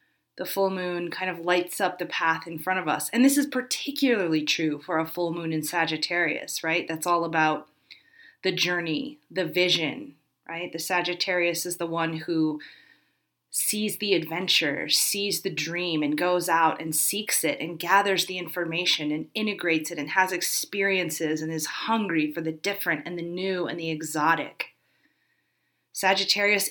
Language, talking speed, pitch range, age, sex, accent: English, 165 wpm, 160-195 Hz, 30-49, female, American